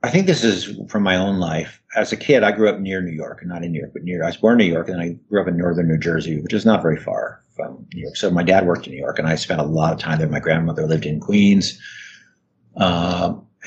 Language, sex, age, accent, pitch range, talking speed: English, male, 50-69, American, 85-105 Hz, 290 wpm